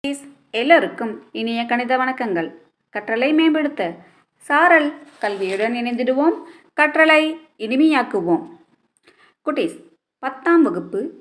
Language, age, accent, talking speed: Tamil, 20-39, native, 75 wpm